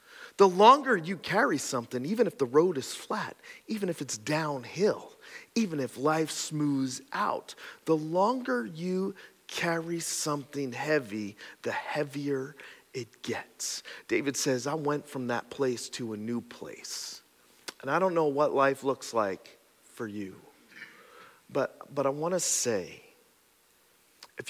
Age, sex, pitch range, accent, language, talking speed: 40-59, male, 140-190 Hz, American, English, 140 wpm